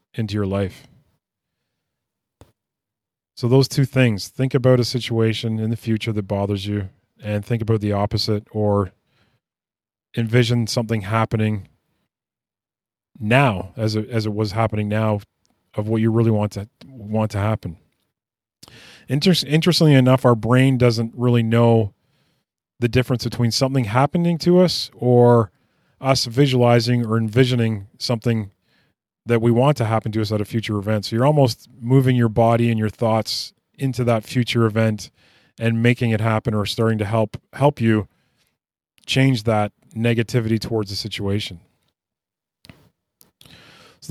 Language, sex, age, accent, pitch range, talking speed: English, male, 30-49, American, 110-130 Hz, 140 wpm